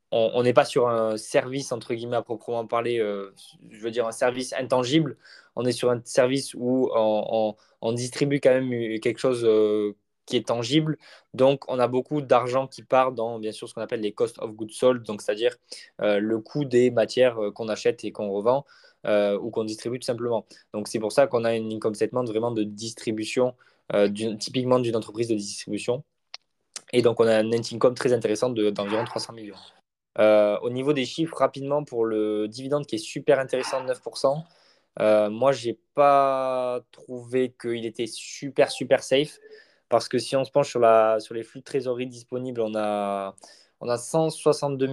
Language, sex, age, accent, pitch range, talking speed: French, male, 20-39, French, 110-130 Hz, 200 wpm